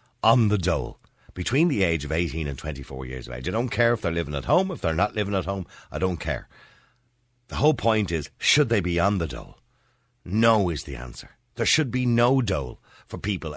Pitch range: 85-120 Hz